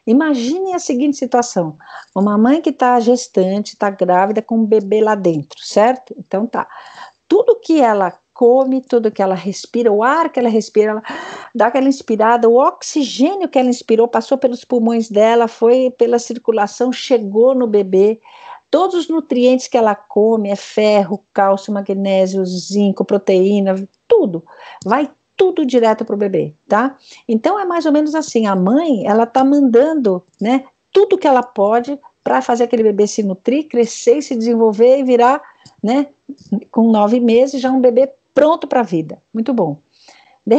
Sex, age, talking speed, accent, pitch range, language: female, 50-69, 165 wpm, Brazilian, 210-270 Hz, Portuguese